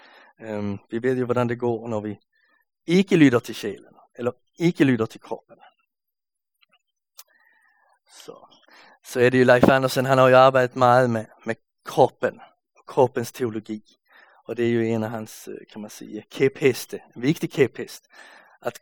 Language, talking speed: Danish, 165 wpm